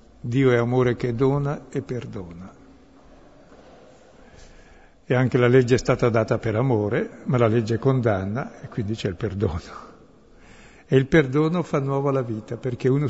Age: 60-79